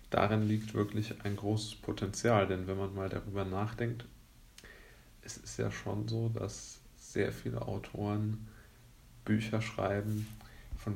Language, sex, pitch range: German, male, 95-110 Hz